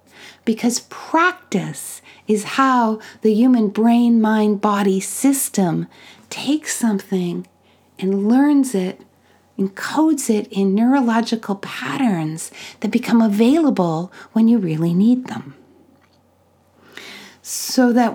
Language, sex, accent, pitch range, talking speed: English, female, American, 195-255 Hz, 100 wpm